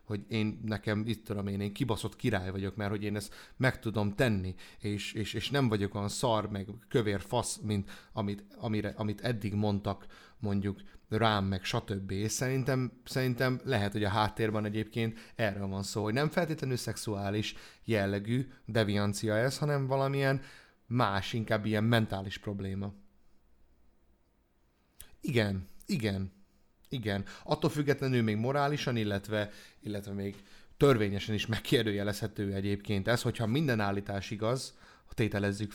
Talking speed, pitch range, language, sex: 135 wpm, 100-120 Hz, Hungarian, male